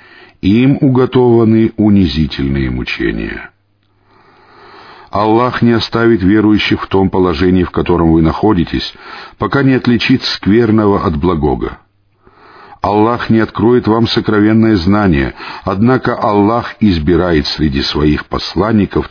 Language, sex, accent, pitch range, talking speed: Russian, male, native, 85-120 Hz, 105 wpm